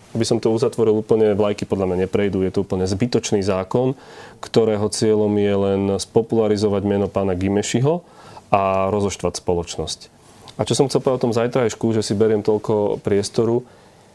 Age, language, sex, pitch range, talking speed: 30-49, Slovak, male, 100-120 Hz, 165 wpm